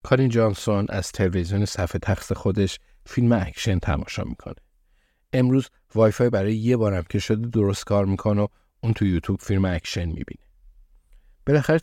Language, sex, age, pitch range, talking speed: Persian, male, 50-69, 90-110 Hz, 145 wpm